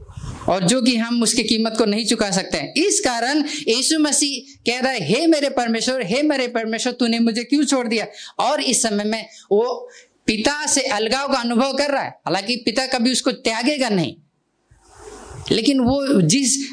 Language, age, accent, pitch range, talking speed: Hindi, 50-69, native, 205-275 Hz, 180 wpm